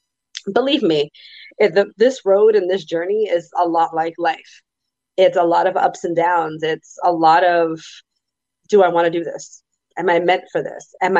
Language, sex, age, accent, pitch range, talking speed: English, female, 30-49, American, 165-245 Hz, 200 wpm